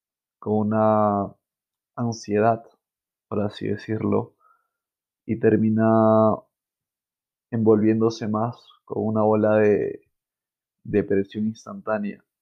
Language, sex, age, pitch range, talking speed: Spanish, male, 20-39, 105-120 Hz, 75 wpm